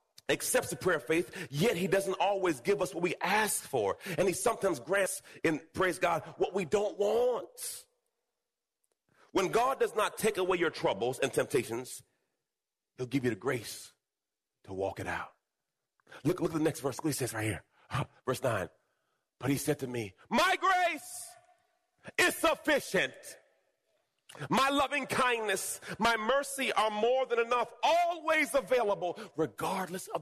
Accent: American